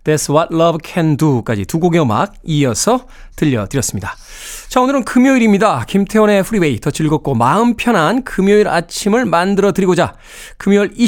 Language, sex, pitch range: Korean, male, 145-200 Hz